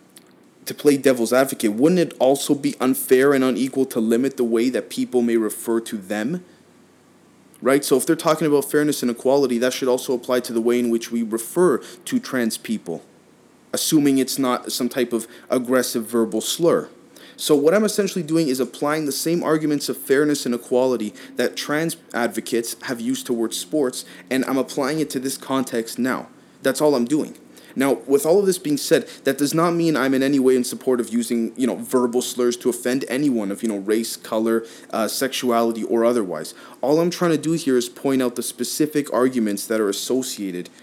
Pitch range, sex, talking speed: 115-145 Hz, male, 200 wpm